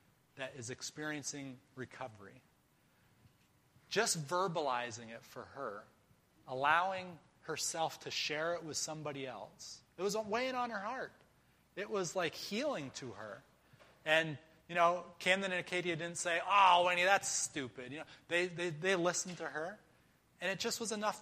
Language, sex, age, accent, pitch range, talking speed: English, male, 30-49, American, 135-175 Hz, 150 wpm